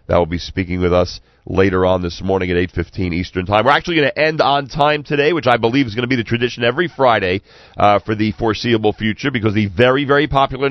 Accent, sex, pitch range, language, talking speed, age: American, male, 100-135 Hz, English, 240 wpm, 40-59